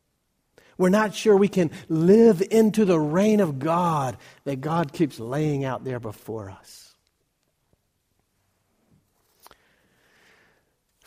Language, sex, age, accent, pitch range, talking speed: English, male, 60-79, American, 140-190 Hz, 110 wpm